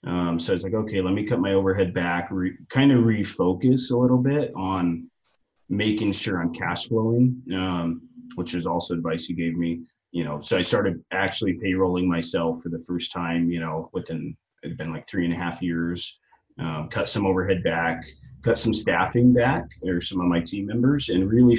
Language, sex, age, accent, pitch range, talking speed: English, male, 30-49, American, 85-115 Hz, 200 wpm